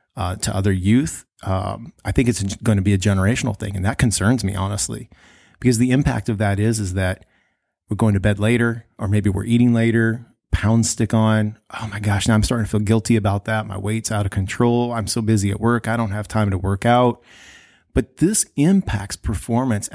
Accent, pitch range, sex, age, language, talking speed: American, 100-115 Hz, male, 30-49, English, 215 wpm